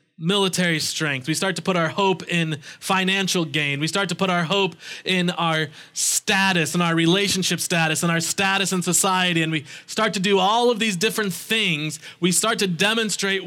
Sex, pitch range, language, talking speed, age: male, 155-195 Hz, English, 190 wpm, 20-39